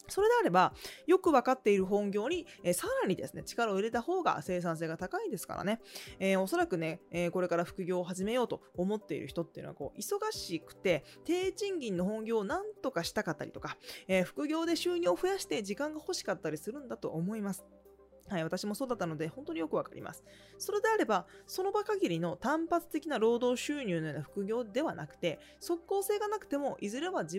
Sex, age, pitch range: female, 20-39, 170-280 Hz